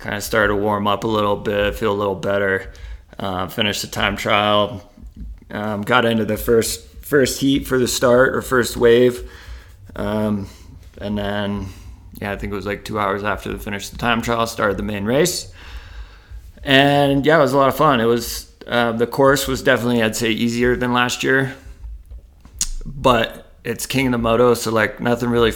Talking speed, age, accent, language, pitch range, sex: 195 wpm, 20-39, American, English, 95-120 Hz, male